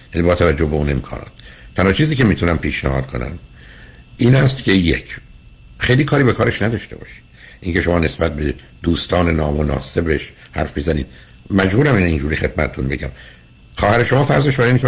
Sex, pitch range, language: male, 75-95 Hz, Persian